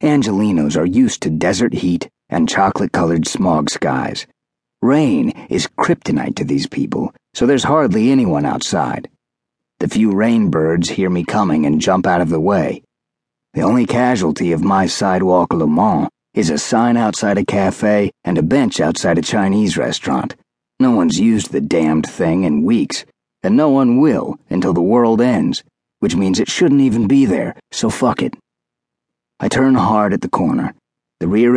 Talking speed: 170 wpm